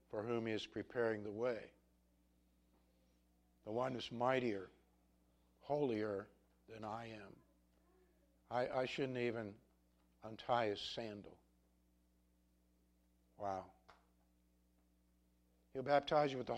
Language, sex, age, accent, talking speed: English, male, 60-79, American, 100 wpm